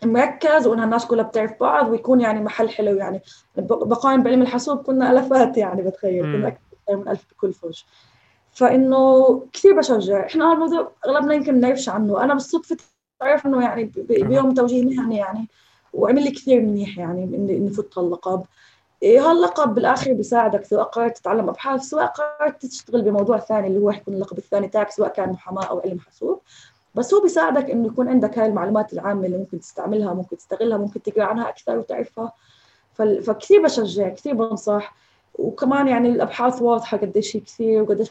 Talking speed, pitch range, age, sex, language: 160 wpm, 210-275 Hz, 20-39, female, Arabic